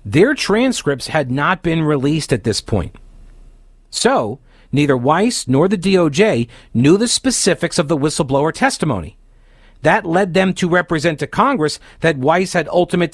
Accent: American